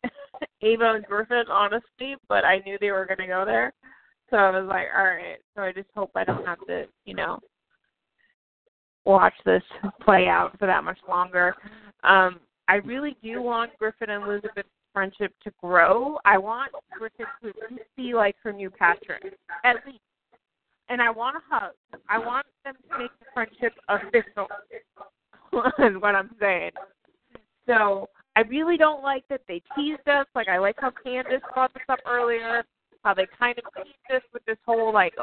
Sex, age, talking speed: female, 30-49, 175 wpm